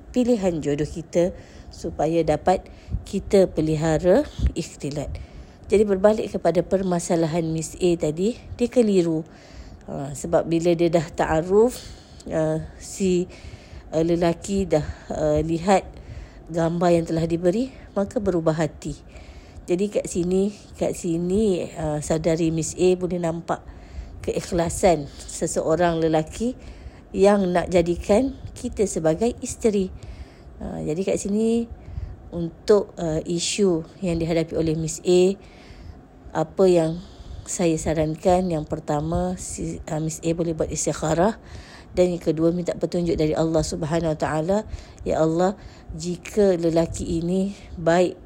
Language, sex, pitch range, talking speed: Malay, female, 160-190 Hz, 110 wpm